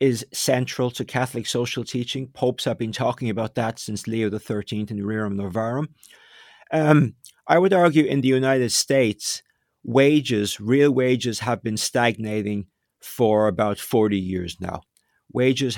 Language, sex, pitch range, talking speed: English, male, 115-140 Hz, 145 wpm